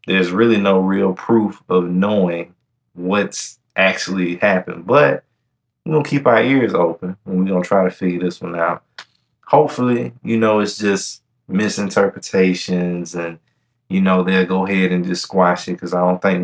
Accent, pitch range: American, 90-115 Hz